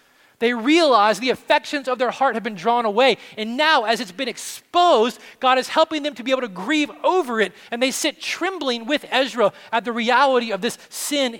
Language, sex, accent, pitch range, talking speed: English, male, American, 200-255 Hz, 210 wpm